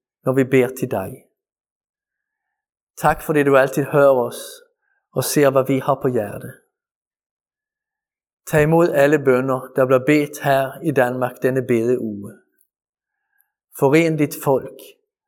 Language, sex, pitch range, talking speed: Danish, male, 130-215 Hz, 140 wpm